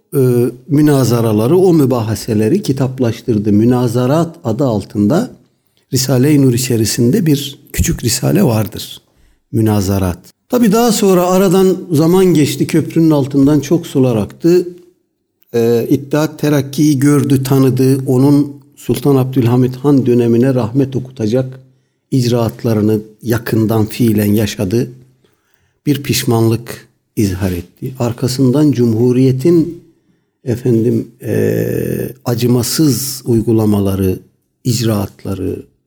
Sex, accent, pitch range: male, native, 110-145 Hz